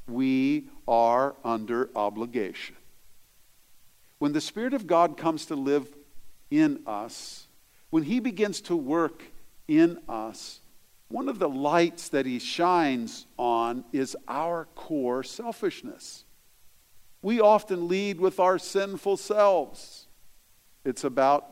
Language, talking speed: English, 115 wpm